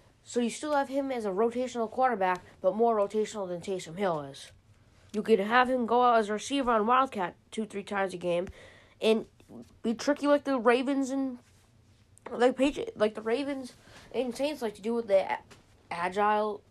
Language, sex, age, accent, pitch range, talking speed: English, female, 20-39, American, 185-250 Hz, 185 wpm